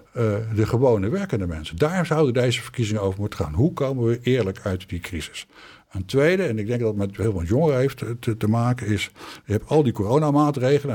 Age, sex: 60-79, male